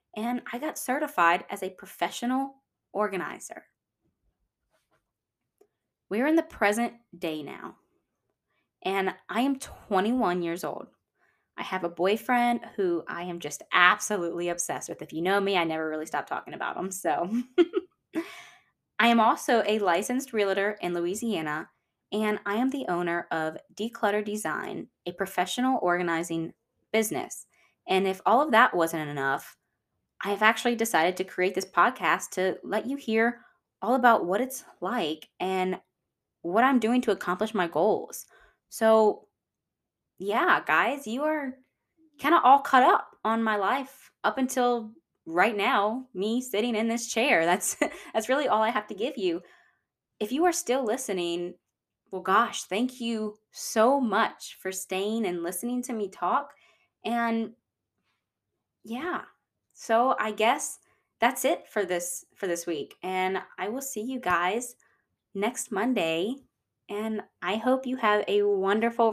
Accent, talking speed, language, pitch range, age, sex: American, 150 wpm, English, 180-245 Hz, 20-39, female